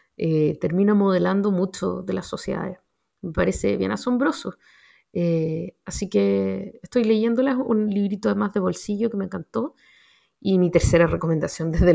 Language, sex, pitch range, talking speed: Spanish, female, 170-230 Hz, 150 wpm